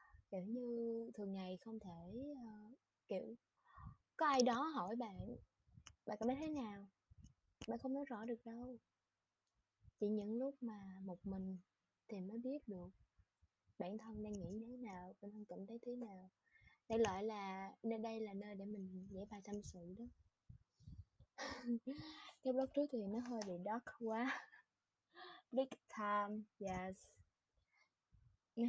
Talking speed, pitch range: 155 wpm, 200-245 Hz